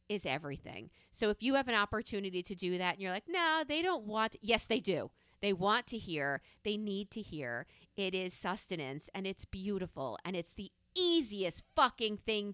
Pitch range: 170-225 Hz